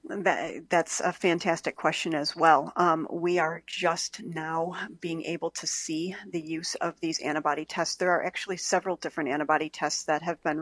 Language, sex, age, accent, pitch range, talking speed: English, female, 40-59, American, 160-180 Hz, 180 wpm